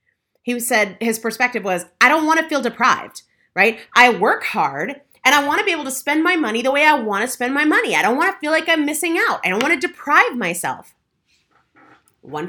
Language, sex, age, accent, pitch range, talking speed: English, female, 30-49, American, 225-315 Hz, 235 wpm